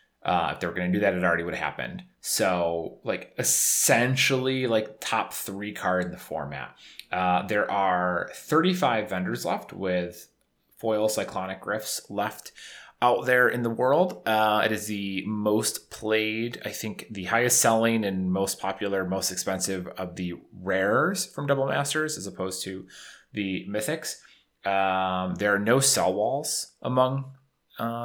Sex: male